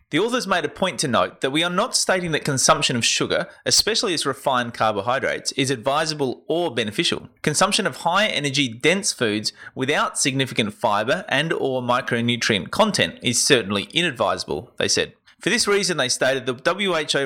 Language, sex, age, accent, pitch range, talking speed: English, male, 30-49, Australian, 115-155 Hz, 170 wpm